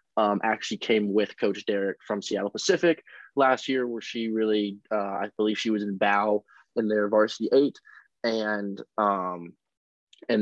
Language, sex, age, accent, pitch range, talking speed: English, male, 20-39, American, 105-115 Hz, 160 wpm